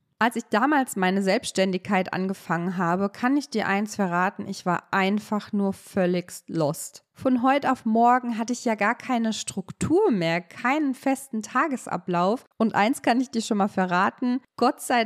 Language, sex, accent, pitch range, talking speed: German, female, German, 195-250 Hz, 165 wpm